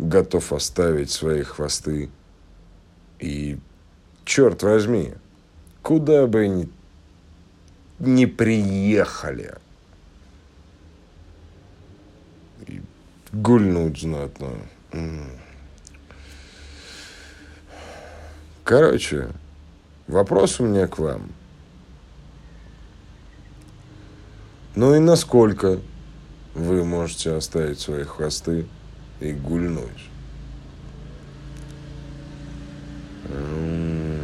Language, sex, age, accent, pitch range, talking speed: Russian, male, 50-69, native, 75-95 Hz, 55 wpm